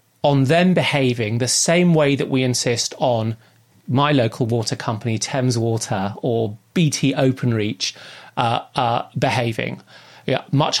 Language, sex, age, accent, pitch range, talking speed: English, male, 30-49, British, 125-155 Hz, 130 wpm